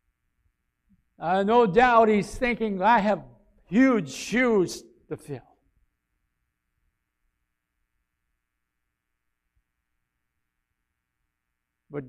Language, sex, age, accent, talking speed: English, male, 60-79, American, 60 wpm